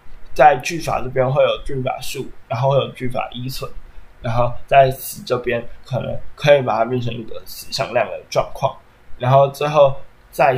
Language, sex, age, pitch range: Chinese, male, 20-39, 125-145 Hz